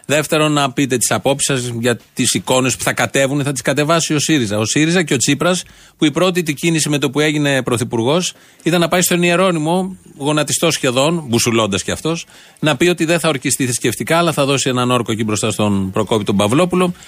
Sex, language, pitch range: male, Greek, 120-155 Hz